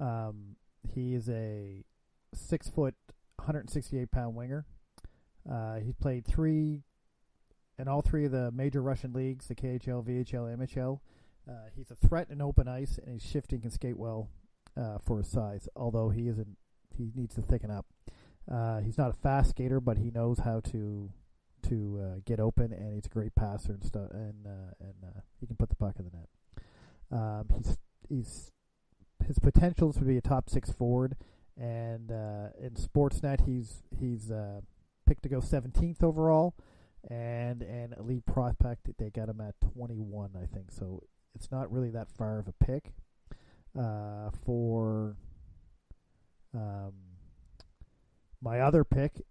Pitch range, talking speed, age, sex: 105-130 Hz, 165 wpm, 40-59, male